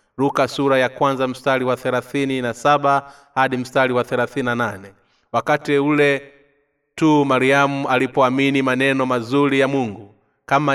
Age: 30-49